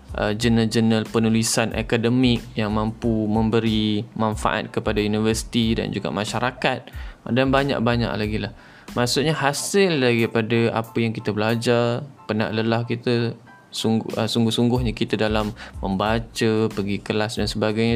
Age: 20-39